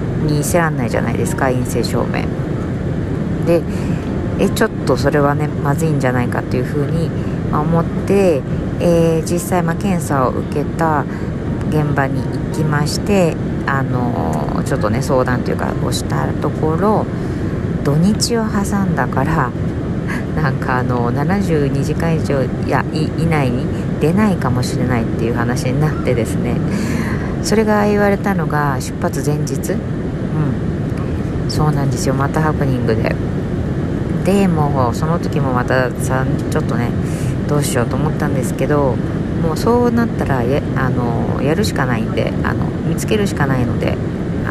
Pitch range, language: 130-165 Hz, Japanese